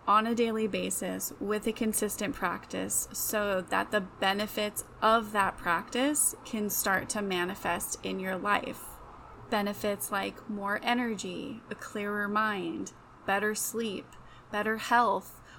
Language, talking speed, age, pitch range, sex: English, 125 wpm, 20-39, 195-220 Hz, female